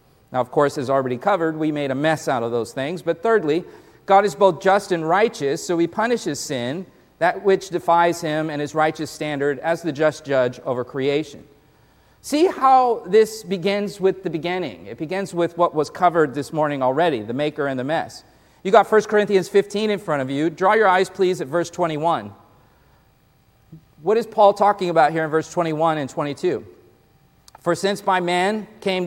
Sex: male